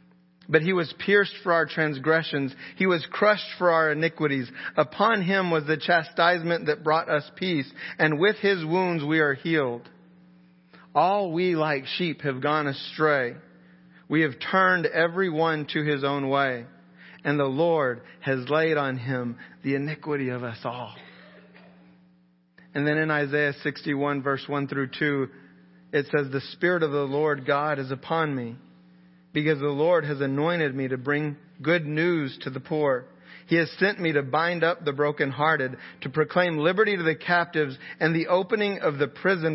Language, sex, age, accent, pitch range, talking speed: English, male, 40-59, American, 135-165 Hz, 170 wpm